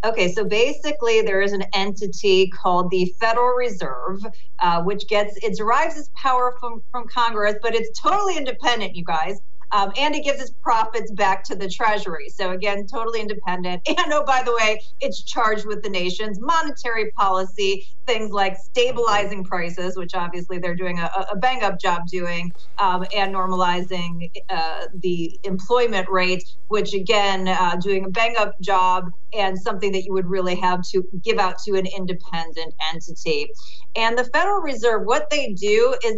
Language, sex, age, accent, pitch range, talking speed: English, female, 40-59, American, 185-245 Hz, 170 wpm